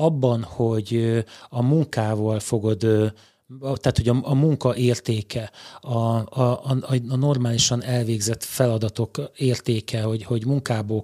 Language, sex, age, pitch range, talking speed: Hungarian, male, 30-49, 110-130 Hz, 110 wpm